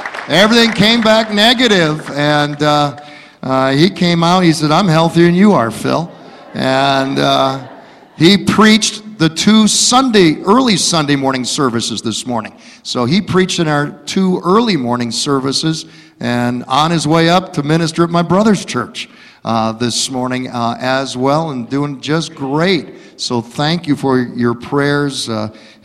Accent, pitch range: American, 135-175 Hz